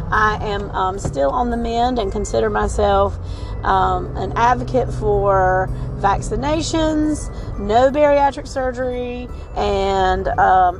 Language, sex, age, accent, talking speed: English, female, 40-59, American, 110 wpm